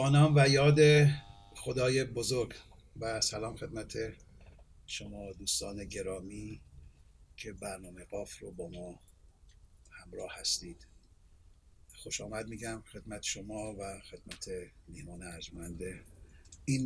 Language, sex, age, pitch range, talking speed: Persian, male, 50-69, 85-115 Hz, 100 wpm